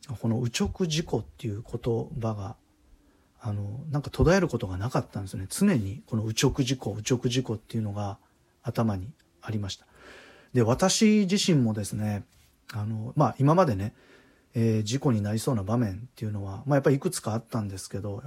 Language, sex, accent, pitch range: Japanese, male, native, 110-135 Hz